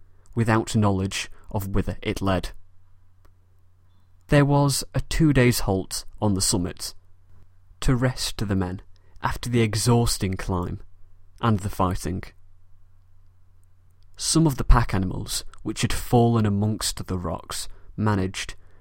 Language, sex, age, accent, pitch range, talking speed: English, male, 30-49, British, 90-115 Hz, 120 wpm